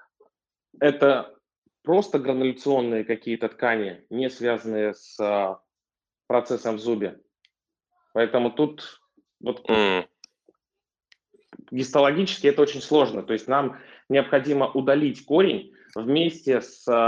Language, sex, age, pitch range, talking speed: Russian, male, 20-39, 115-140 Hz, 90 wpm